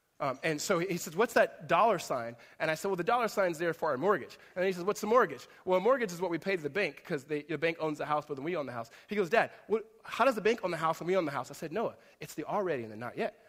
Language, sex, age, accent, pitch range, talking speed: English, male, 20-39, American, 130-195 Hz, 340 wpm